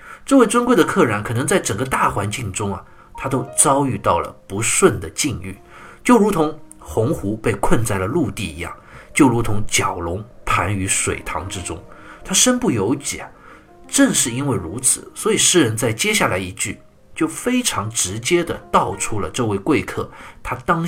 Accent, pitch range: native, 100-165 Hz